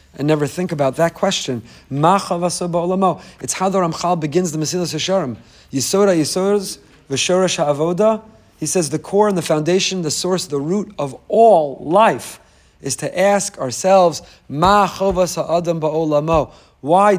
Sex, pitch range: male, 145-195 Hz